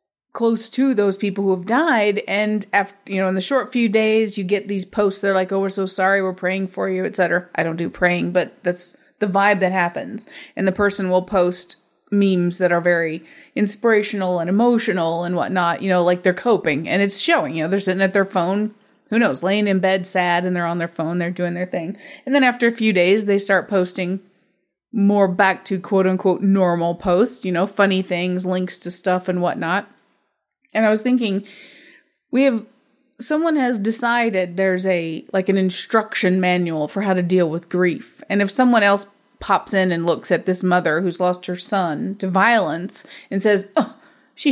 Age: 30-49